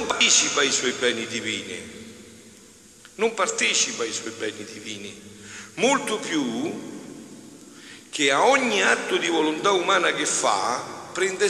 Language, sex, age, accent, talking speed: Italian, male, 50-69, native, 125 wpm